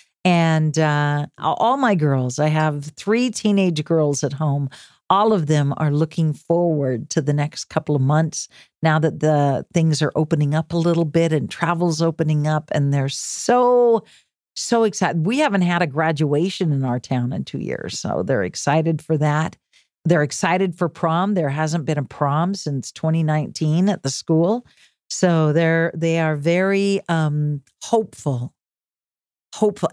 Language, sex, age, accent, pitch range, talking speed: English, female, 50-69, American, 150-175 Hz, 160 wpm